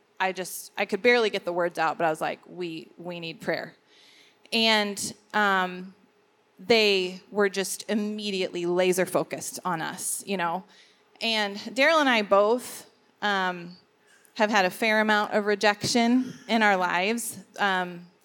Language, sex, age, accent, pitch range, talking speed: English, female, 30-49, American, 195-230 Hz, 150 wpm